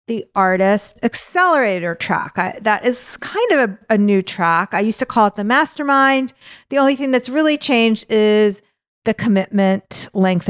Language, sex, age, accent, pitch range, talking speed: English, female, 40-59, American, 195-255 Hz, 170 wpm